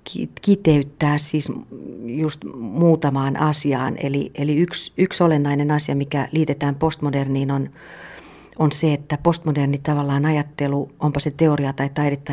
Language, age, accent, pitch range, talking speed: Finnish, 50-69, native, 135-155 Hz, 130 wpm